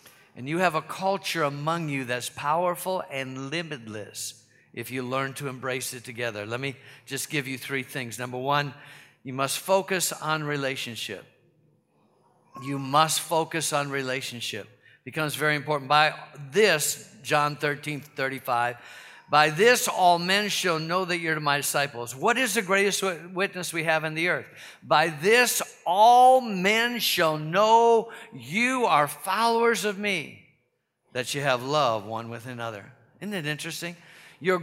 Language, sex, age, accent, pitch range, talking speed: English, male, 50-69, American, 145-195 Hz, 150 wpm